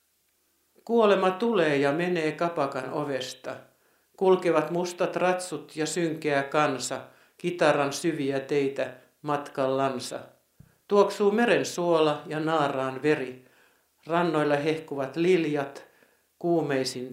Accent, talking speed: native, 95 wpm